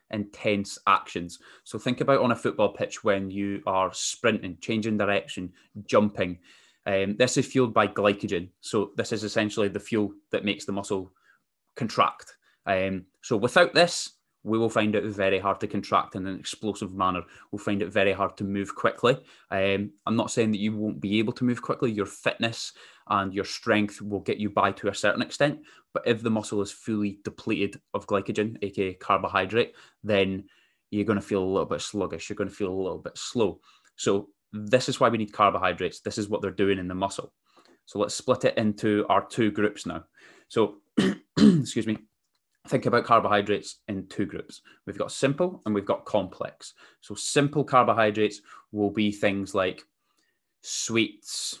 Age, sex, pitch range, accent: 20-39, male, 100-115 Hz, British